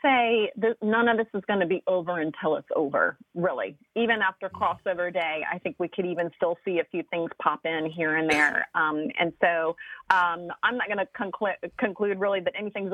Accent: American